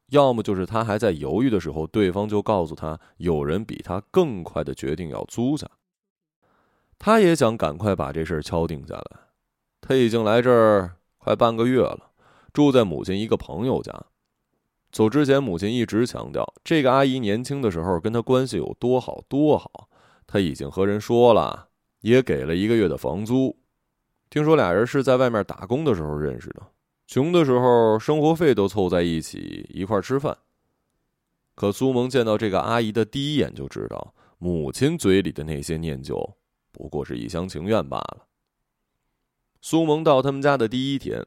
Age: 20-39